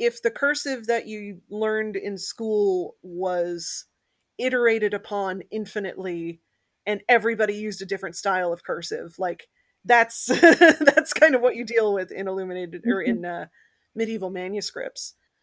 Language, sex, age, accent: English, female, 30-49, American